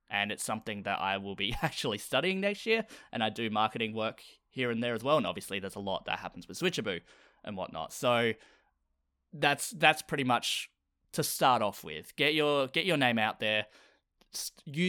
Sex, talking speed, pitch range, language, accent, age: male, 200 wpm, 100-135 Hz, English, Australian, 20-39